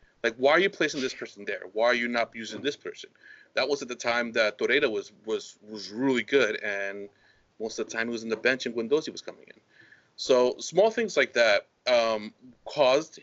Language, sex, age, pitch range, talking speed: English, male, 30-49, 115-155 Hz, 220 wpm